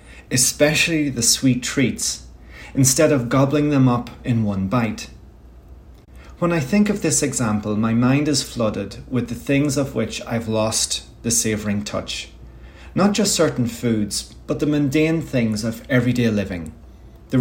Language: English